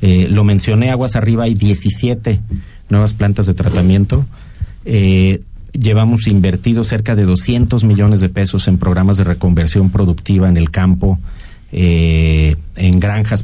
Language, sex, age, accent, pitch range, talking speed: Spanish, male, 40-59, Mexican, 90-110 Hz, 140 wpm